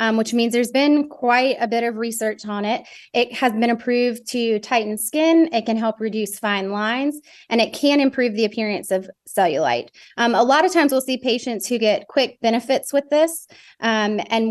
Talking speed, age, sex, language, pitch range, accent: 205 wpm, 20-39, female, English, 215-250 Hz, American